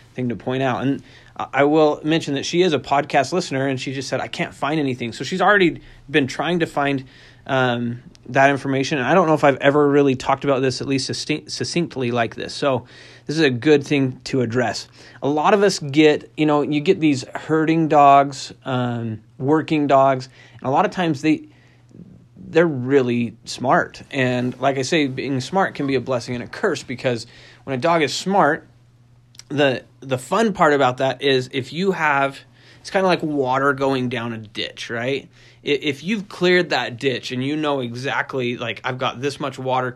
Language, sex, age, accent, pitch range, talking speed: English, male, 30-49, American, 125-150 Hz, 200 wpm